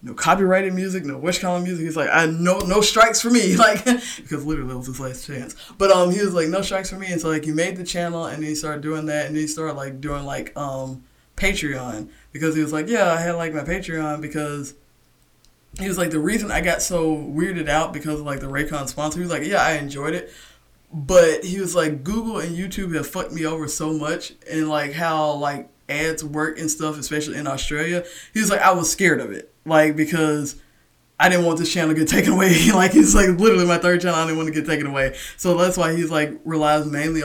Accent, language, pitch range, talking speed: American, English, 145-175 Hz, 245 wpm